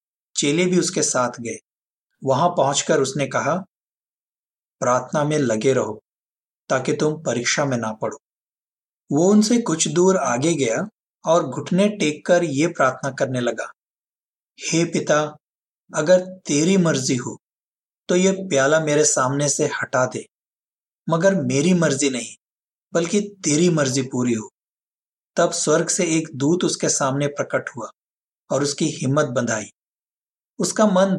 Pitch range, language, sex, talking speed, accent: 135-175 Hz, Hindi, male, 140 wpm, native